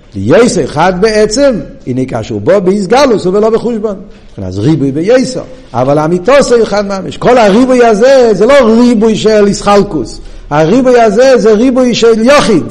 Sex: male